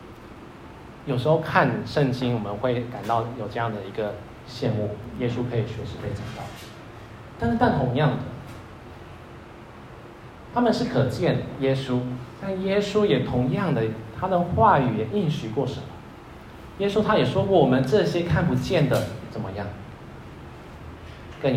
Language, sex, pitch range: Chinese, male, 115-140 Hz